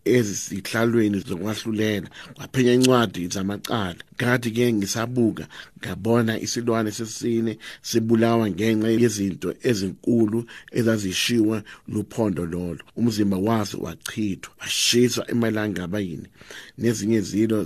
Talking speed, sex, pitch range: 100 wpm, male, 100-120 Hz